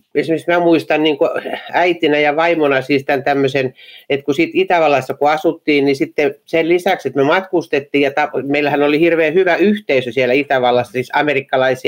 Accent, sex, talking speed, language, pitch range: native, male, 160 wpm, Finnish, 130-175 Hz